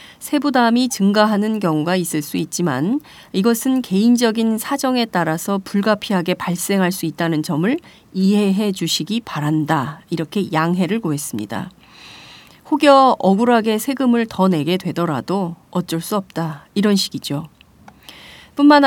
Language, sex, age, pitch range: Korean, female, 30-49, 165-220 Hz